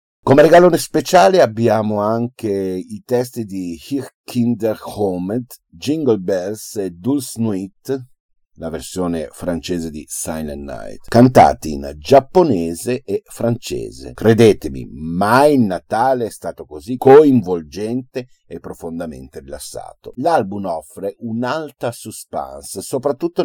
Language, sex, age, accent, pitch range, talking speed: Italian, male, 50-69, native, 95-130 Hz, 110 wpm